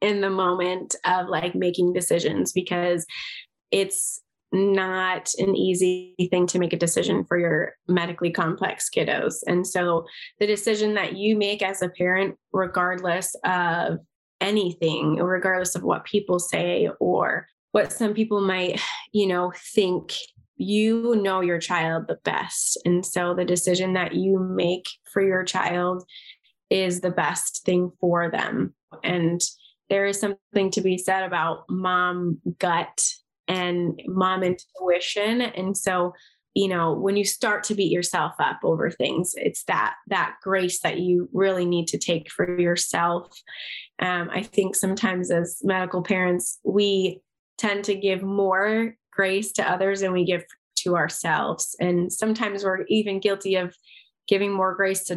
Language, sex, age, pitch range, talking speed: English, female, 20-39, 180-195 Hz, 150 wpm